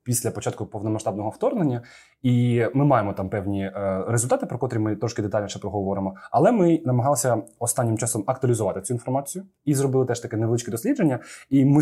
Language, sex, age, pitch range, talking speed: Ukrainian, male, 20-39, 110-140 Hz, 170 wpm